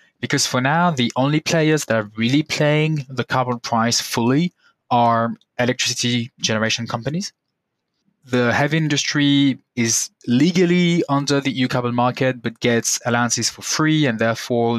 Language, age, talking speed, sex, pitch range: English, 20-39, 140 wpm, male, 110-140 Hz